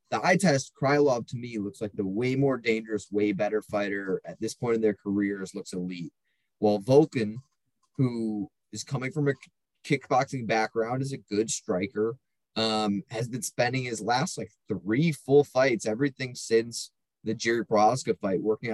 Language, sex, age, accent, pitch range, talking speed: English, male, 20-39, American, 105-140 Hz, 170 wpm